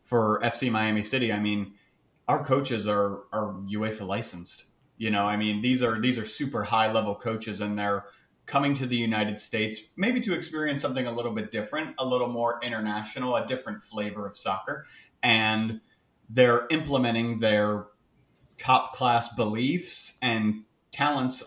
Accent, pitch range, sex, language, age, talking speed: American, 110-130 Hz, male, English, 30-49, 160 wpm